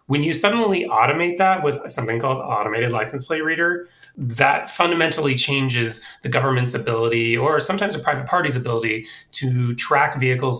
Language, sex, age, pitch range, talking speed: English, male, 30-49, 115-150 Hz, 155 wpm